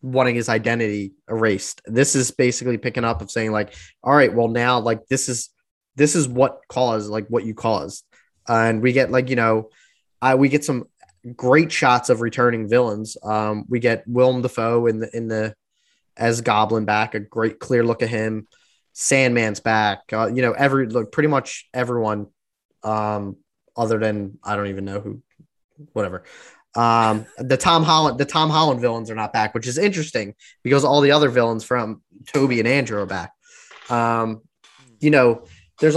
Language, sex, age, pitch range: English, male, 10-29, 110-130 Hz